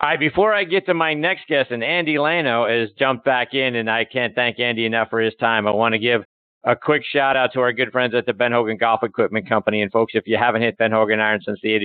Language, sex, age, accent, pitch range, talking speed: English, male, 50-69, American, 115-150 Hz, 280 wpm